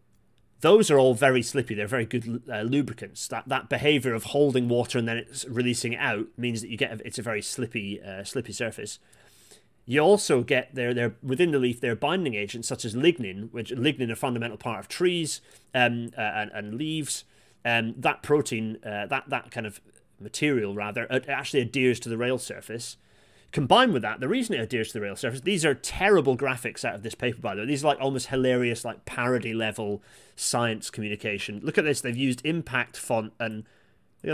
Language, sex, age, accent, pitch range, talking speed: English, male, 30-49, British, 115-130 Hz, 210 wpm